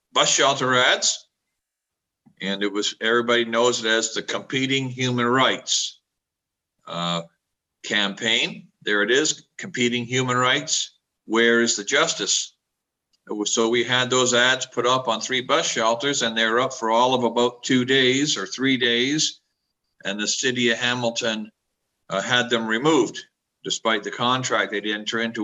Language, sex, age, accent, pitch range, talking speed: English, male, 50-69, American, 110-135 Hz, 160 wpm